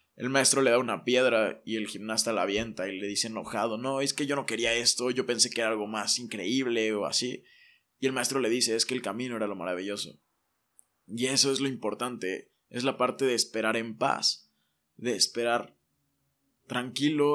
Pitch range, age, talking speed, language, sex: 120-150 Hz, 20-39, 200 wpm, Spanish, male